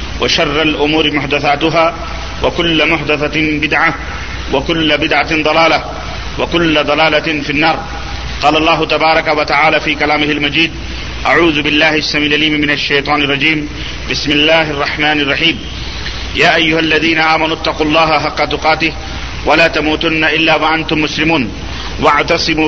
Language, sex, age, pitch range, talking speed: Urdu, male, 40-59, 150-160 Hz, 115 wpm